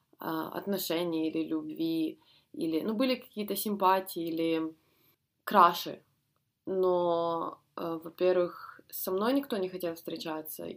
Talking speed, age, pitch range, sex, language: 105 wpm, 20-39, 160-185 Hz, female, Ukrainian